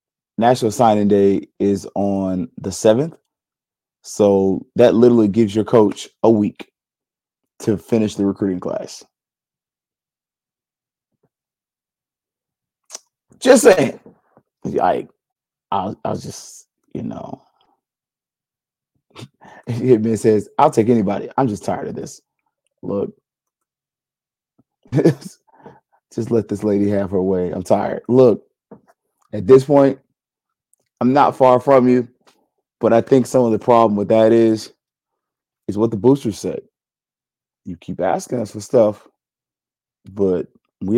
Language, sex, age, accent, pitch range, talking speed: English, male, 30-49, American, 100-125 Hz, 120 wpm